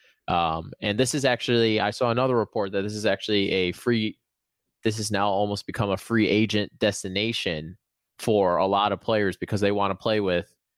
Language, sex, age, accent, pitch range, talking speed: English, male, 20-39, American, 95-110 Hz, 195 wpm